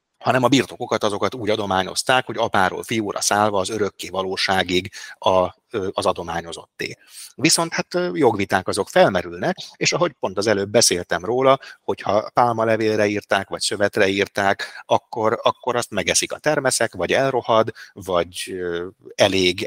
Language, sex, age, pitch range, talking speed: Hungarian, male, 30-49, 95-120 Hz, 130 wpm